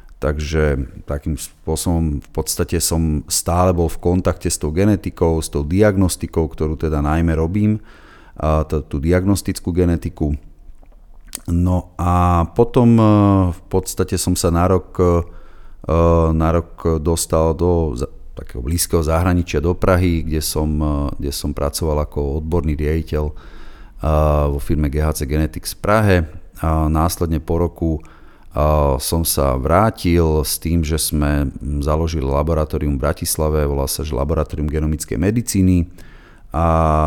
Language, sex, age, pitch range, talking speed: Slovak, male, 30-49, 75-90 Hz, 125 wpm